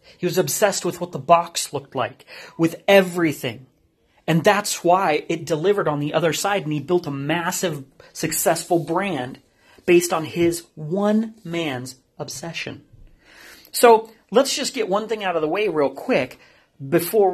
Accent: American